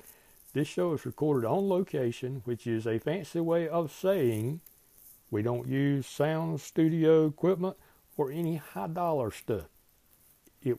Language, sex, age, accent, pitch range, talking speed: English, male, 60-79, American, 120-160 Hz, 135 wpm